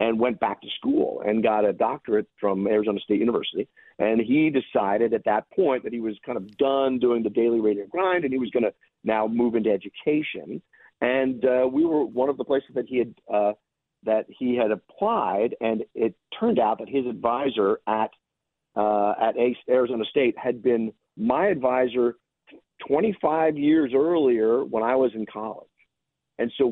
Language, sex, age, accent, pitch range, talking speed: English, male, 50-69, American, 110-130 Hz, 180 wpm